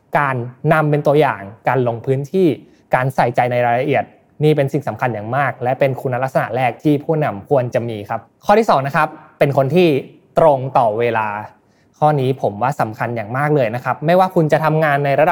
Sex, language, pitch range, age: male, Thai, 125-160 Hz, 20-39